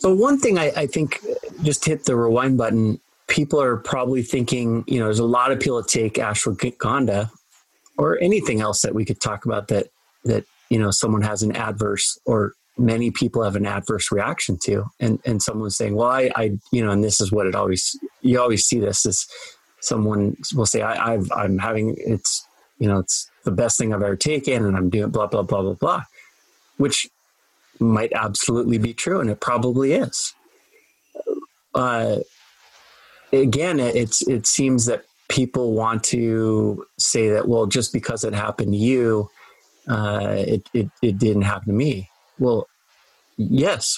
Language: English